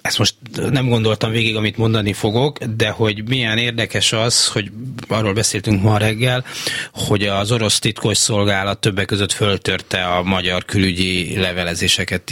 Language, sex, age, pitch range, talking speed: Hungarian, male, 30-49, 95-120 Hz, 140 wpm